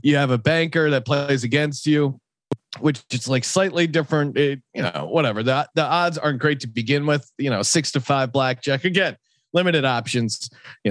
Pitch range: 130-165 Hz